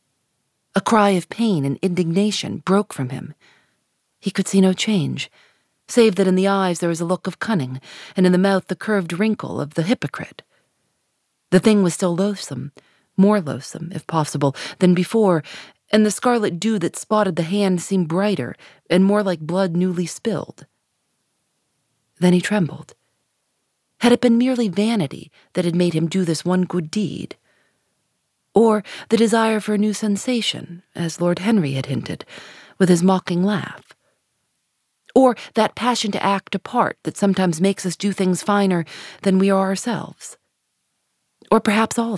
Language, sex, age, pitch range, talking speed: English, female, 40-59, 180-210 Hz, 165 wpm